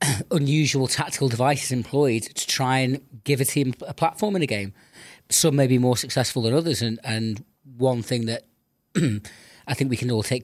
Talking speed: 190 wpm